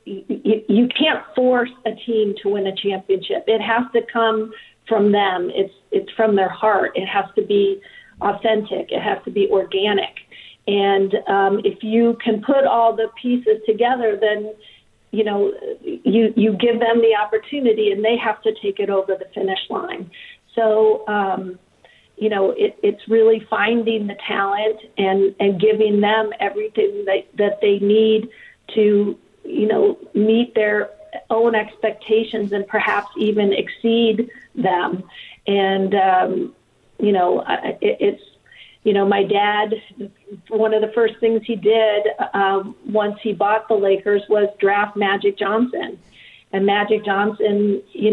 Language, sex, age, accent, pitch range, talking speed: English, female, 40-59, American, 200-225 Hz, 150 wpm